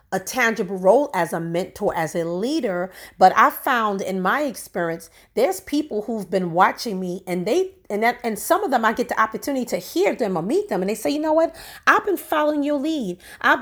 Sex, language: female, English